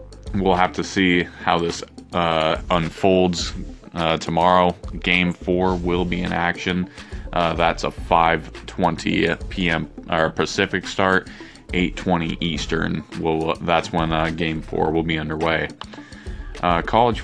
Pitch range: 80-95 Hz